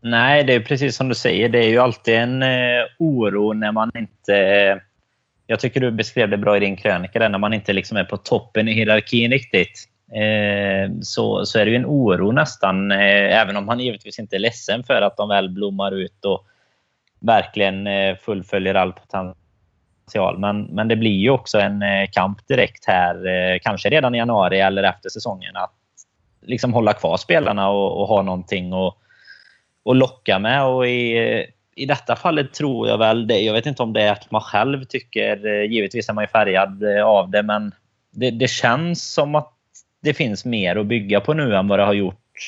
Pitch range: 100-120 Hz